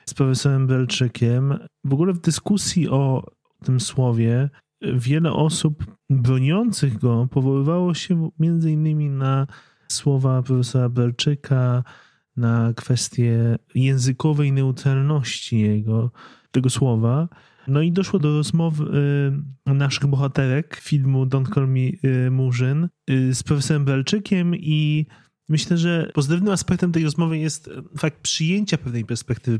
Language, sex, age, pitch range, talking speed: Polish, male, 30-49, 125-155 Hz, 115 wpm